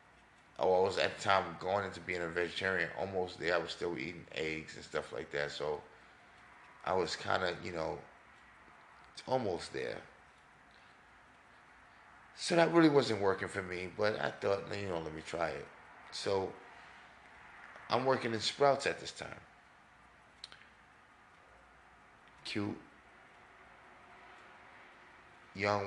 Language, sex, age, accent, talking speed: English, male, 30-49, American, 130 wpm